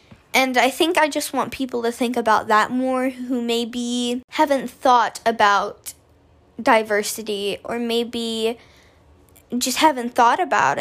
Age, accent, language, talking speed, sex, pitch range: 10-29, American, English, 135 wpm, female, 230-260 Hz